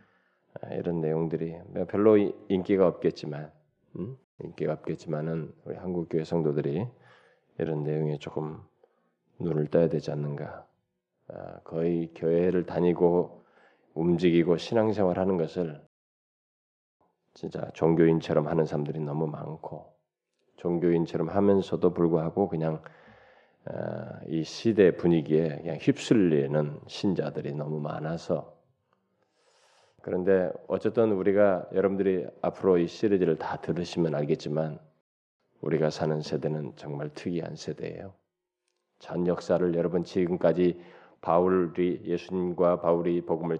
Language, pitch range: Korean, 80-90 Hz